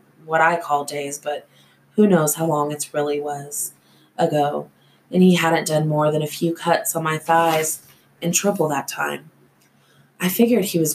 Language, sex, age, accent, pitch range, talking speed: English, female, 20-39, American, 145-165 Hz, 180 wpm